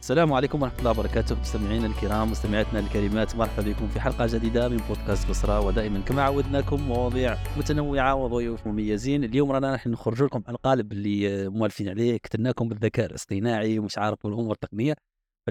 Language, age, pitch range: Arabic, 30-49, 110-140 Hz